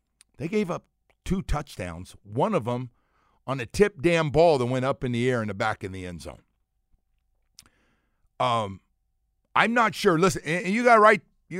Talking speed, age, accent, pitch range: 185 wpm, 50-69, American, 105-170 Hz